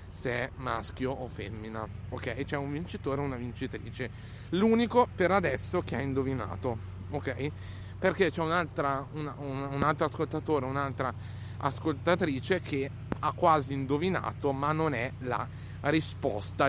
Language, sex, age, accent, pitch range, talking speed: Italian, male, 30-49, native, 120-170 Hz, 135 wpm